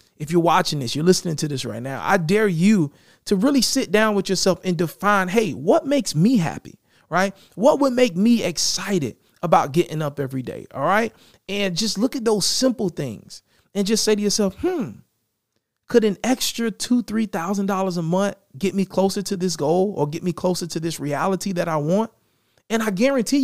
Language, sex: English, male